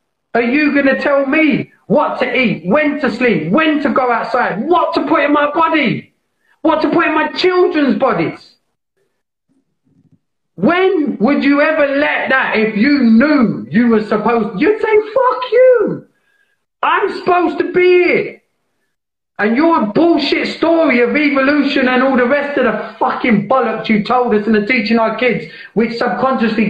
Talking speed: 165 wpm